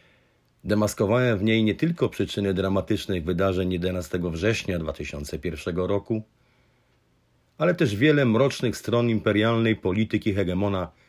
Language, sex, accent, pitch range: Polish, male, native, 90-120 Hz